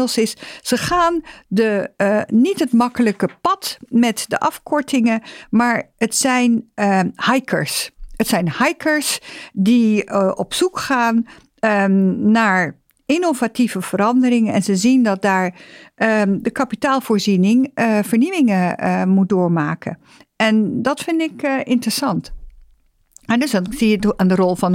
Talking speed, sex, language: 130 wpm, female, Dutch